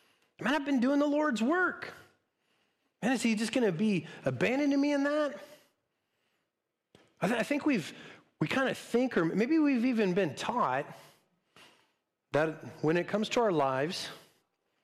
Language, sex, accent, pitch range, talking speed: English, male, American, 160-225 Hz, 160 wpm